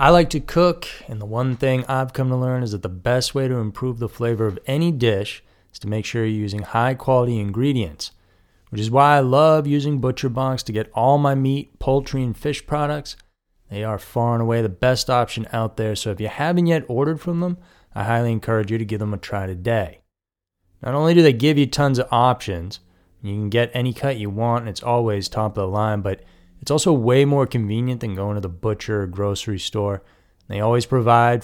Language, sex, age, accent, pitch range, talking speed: English, male, 20-39, American, 105-135 Hz, 225 wpm